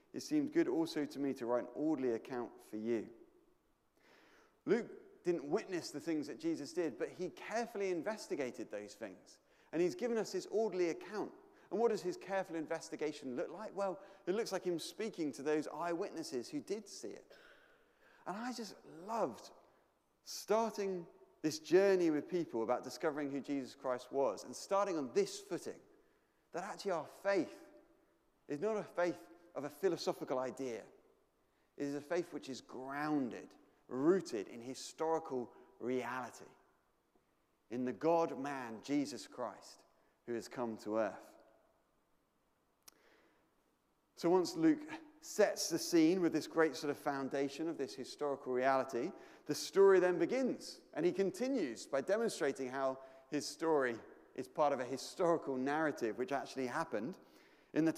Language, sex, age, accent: English, male, 30-49, British